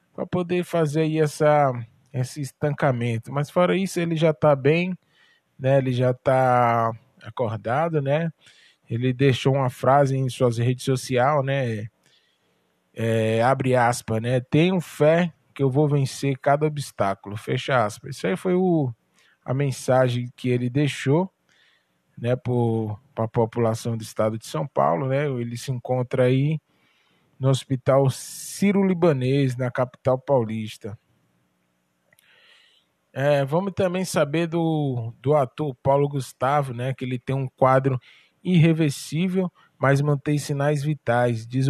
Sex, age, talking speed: male, 20-39, 130 wpm